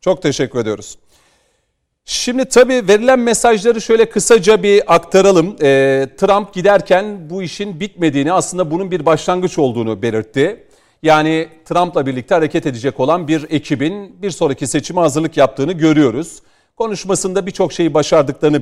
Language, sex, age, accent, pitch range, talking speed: Turkish, male, 40-59, native, 145-200 Hz, 130 wpm